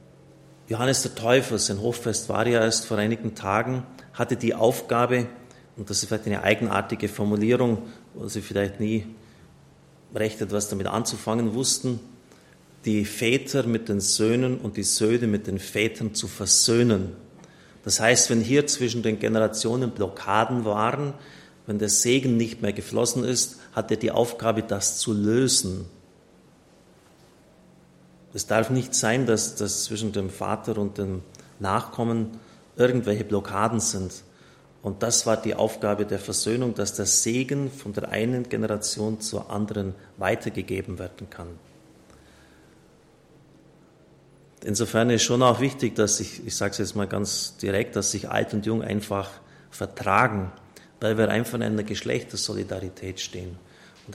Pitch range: 100-120 Hz